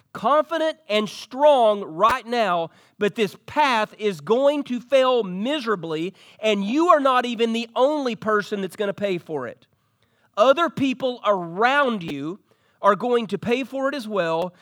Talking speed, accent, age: 160 wpm, American, 40-59